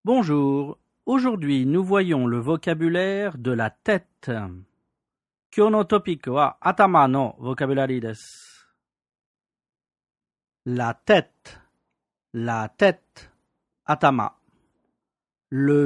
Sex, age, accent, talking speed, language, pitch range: male, 40-59, French, 70 wpm, French, 115-160 Hz